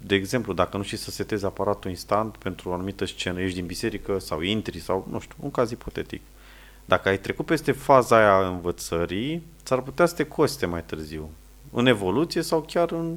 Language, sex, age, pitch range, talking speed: Romanian, male, 30-49, 90-125 Hz, 195 wpm